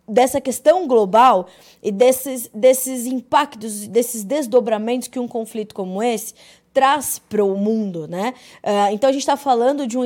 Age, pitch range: 20-39, 230-285 Hz